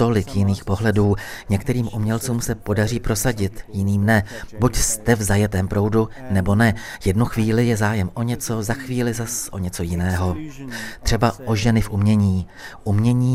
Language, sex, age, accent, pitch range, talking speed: Czech, male, 40-59, native, 95-115 Hz, 155 wpm